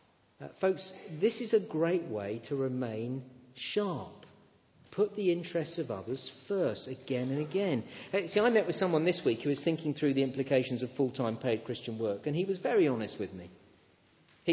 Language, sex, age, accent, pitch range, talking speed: English, male, 40-59, British, 125-180 Hz, 185 wpm